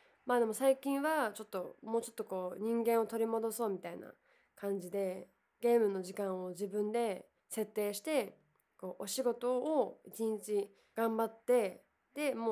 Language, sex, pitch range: Japanese, female, 190-250 Hz